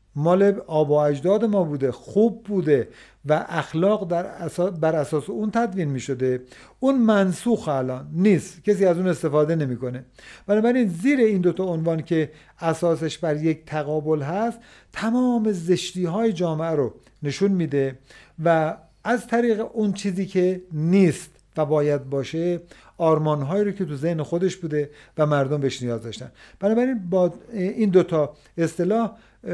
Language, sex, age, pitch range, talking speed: Persian, male, 50-69, 145-190 Hz, 150 wpm